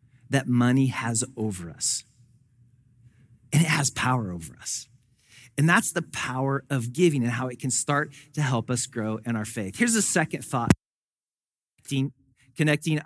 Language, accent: English, American